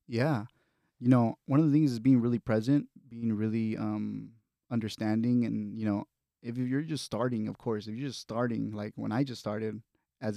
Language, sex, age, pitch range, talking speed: English, male, 20-39, 105-125 Hz, 195 wpm